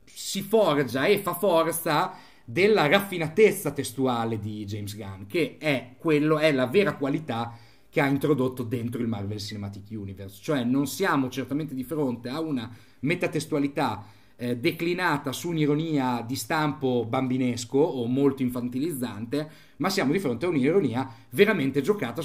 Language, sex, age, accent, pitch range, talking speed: Italian, male, 30-49, native, 125-155 Hz, 145 wpm